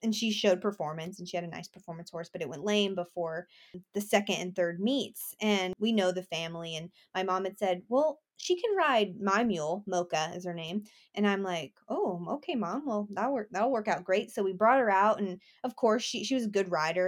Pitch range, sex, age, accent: 180-235 Hz, female, 20-39, American